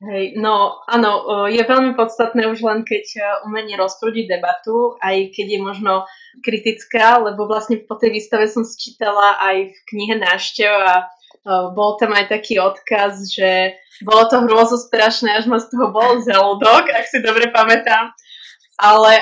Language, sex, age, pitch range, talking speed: Slovak, female, 20-39, 200-230 Hz, 160 wpm